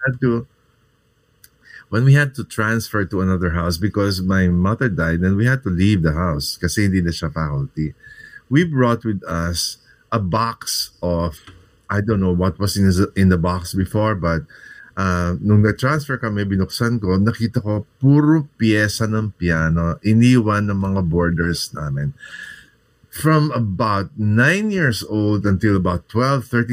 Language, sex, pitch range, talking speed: Filipino, male, 95-130 Hz, 130 wpm